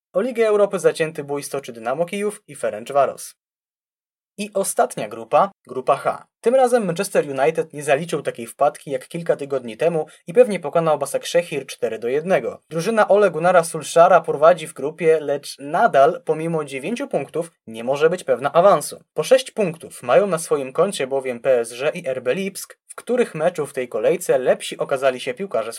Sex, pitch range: male, 140-215 Hz